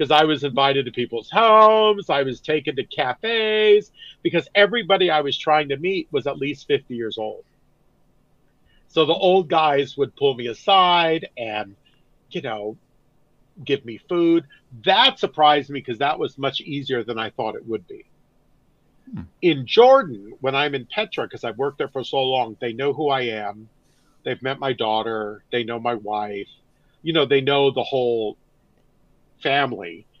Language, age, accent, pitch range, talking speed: English, 50-69, American, 115-165 Hz, 170 wpm